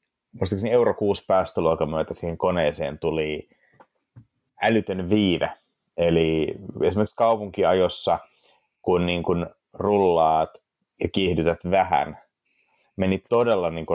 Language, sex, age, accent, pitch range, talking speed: Finnish, male, 30-49, native, 85-105 Hz, 100 wpm